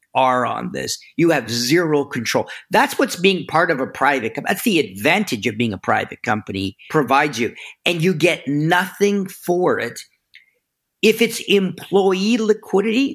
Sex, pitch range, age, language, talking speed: male, 135-195 Hz, 50-69, English, 160 wpm